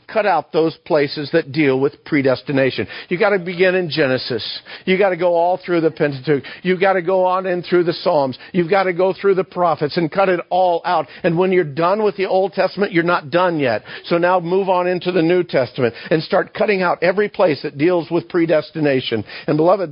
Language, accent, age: English, American, 50-69